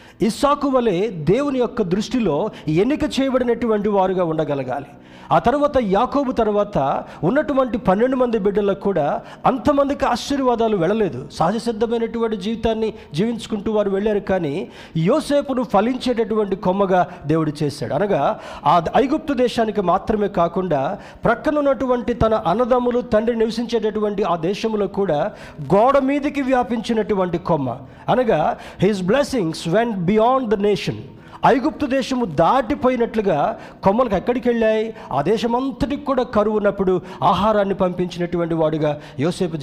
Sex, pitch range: male, 175-240 Hz